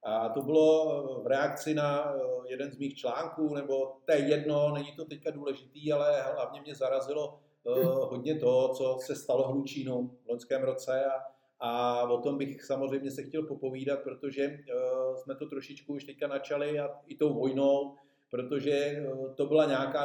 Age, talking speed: 50-69, 160 wpm